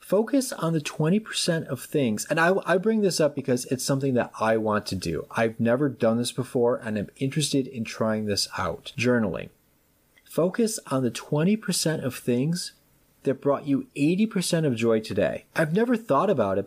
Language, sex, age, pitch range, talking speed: English, male, 30-49, 115-165 Hz, 185 wpm